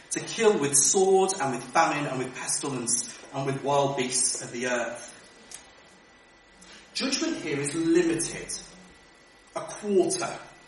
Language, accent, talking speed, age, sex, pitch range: English, British, 130 wpm, 40-59, male, 135-210 Hz